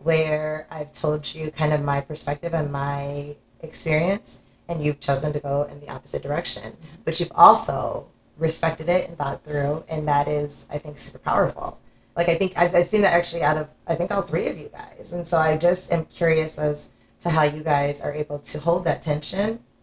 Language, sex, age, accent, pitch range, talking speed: English, female, 20-39, American, 140-170 Hz, 210 wpm